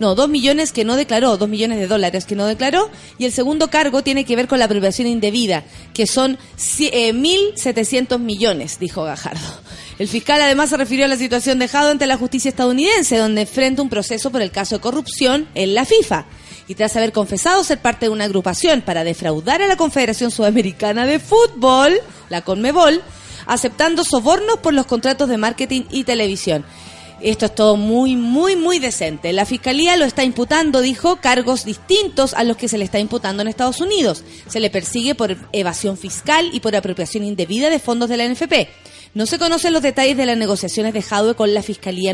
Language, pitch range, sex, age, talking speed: Spanish, 210-275 Hz, female, 30-49, 195 wpm